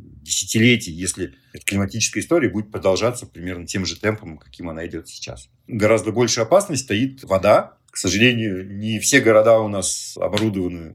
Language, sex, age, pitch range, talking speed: Russian, male, 50-69, 100-130 Hz, 155 wpm